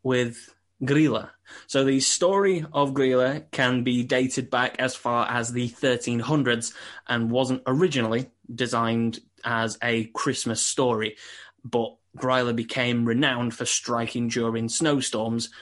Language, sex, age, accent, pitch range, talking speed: English, male, 10-29, British, 115-130 Hz, 125 wpm